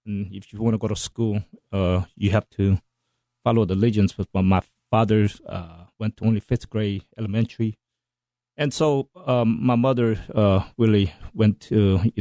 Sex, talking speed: male, 170 wpm